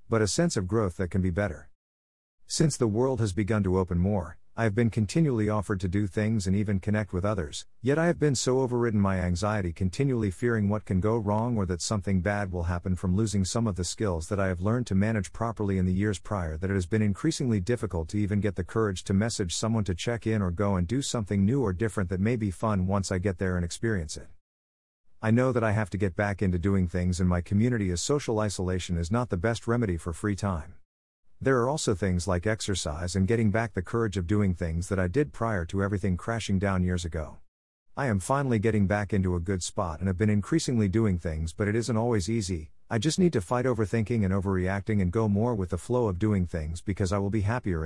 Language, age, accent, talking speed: English, 50-69, American, 245 wpm